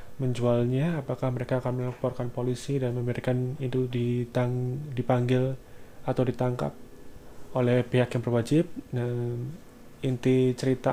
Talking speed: 115 wpm